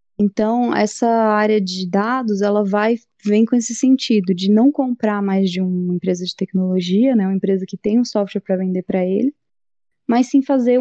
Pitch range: 190-235 Hz